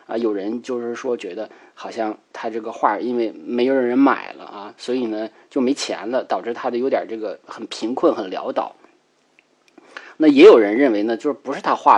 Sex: male